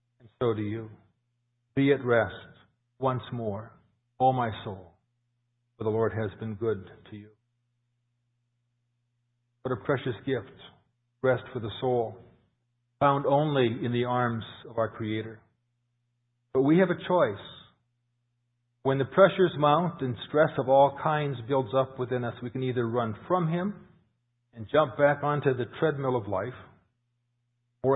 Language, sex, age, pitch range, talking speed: English, male, 50-69, 115-130 Hz, 145 wpm